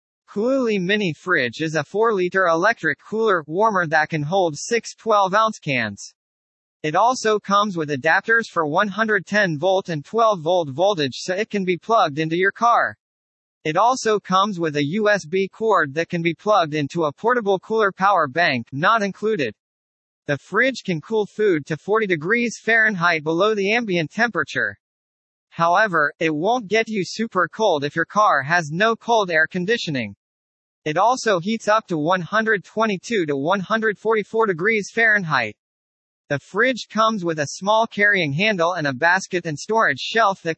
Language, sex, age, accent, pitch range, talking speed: English, male, 40-59, American, 160-215 Hz, 155 wpm